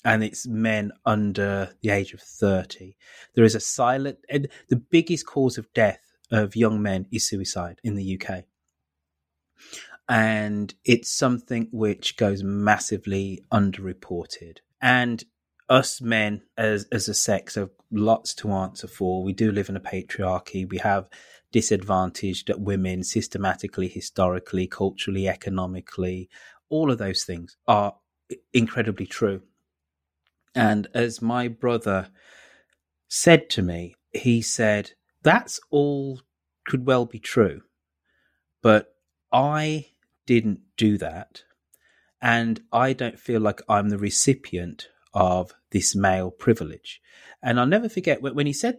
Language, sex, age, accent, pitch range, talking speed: English, male, 30-49, British, 95-120 Hz, 130 wpm